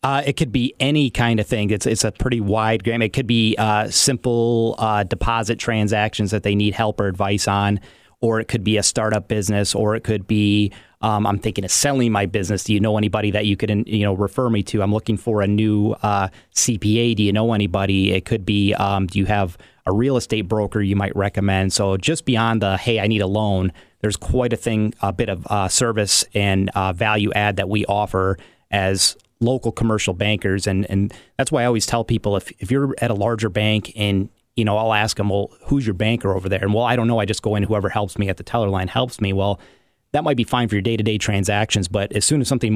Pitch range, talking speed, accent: 100-115 Hz, 245 wpm, American